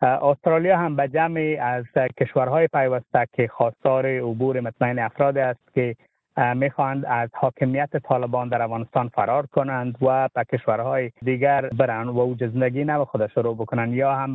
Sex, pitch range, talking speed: male, 120-140 Hz, 150 wpm